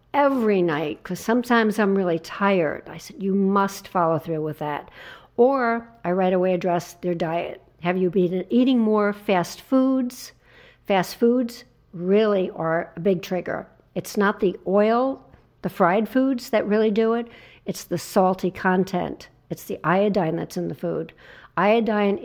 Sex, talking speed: female, 160 wpm